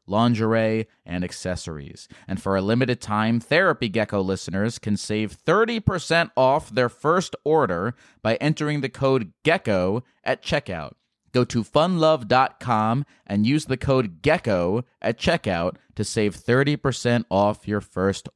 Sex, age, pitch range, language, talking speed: male, 30-49, 100-130 Hz, English, 135 wpm